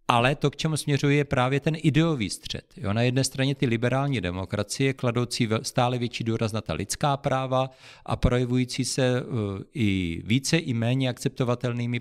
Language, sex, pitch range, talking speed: Czech, male, 105-135 Hz, 170 wpm